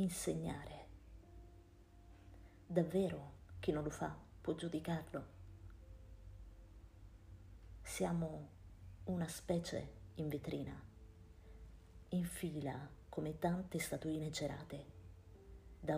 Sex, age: female, 40-59